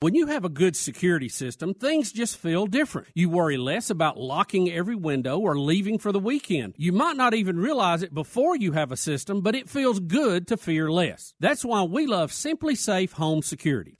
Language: English